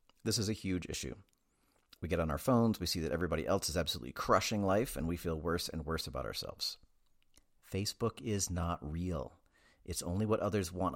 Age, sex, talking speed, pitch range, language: 40-59, male, 195 wpm, 75-110 Hz, English